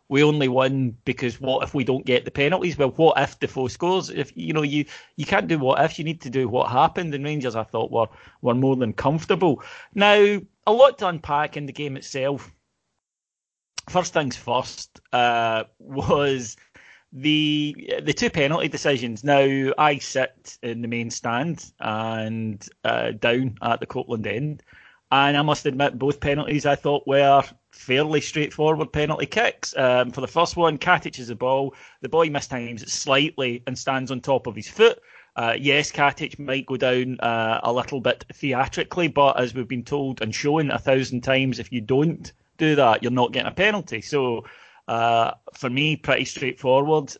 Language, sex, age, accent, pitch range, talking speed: English, male, 30-49, British, 125-150 Hz, 185 wpm